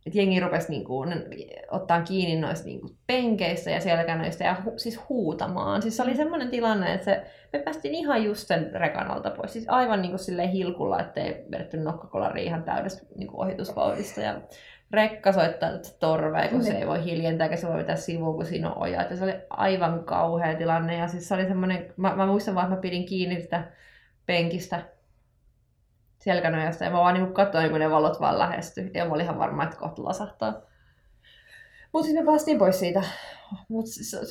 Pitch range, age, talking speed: 160-200 Hz, 20-39, 175 wpm